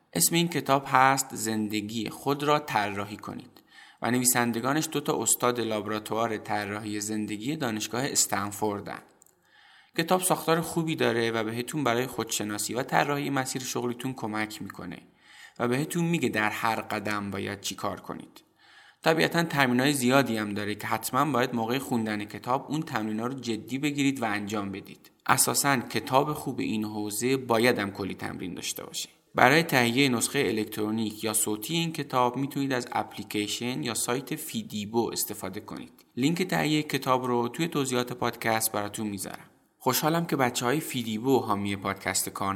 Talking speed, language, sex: 145 wpm, Persian, male